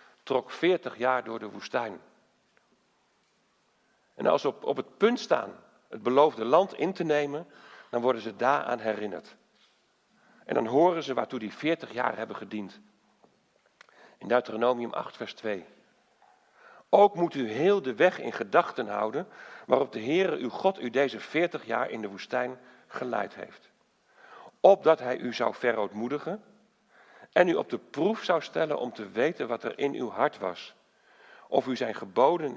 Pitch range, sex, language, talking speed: 125-175 Hz, male, Dutch, 160 wpm